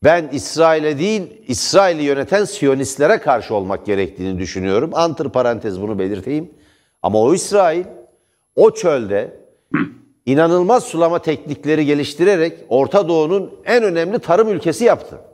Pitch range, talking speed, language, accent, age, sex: 120-175 Hz, 115 wpm, Turkish, native, 60-79, male